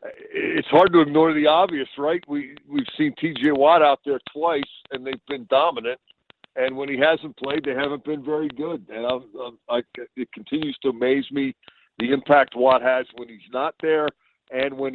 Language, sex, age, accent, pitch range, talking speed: English, male, 50-69, American, 130-155 Hz, 195 wpm